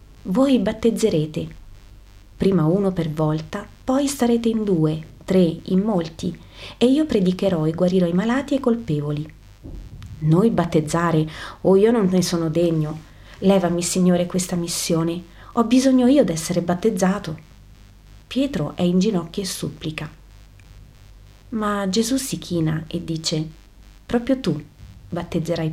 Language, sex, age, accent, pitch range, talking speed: Italian, female, 30-49, native, 155-200 Hz, 130 wpm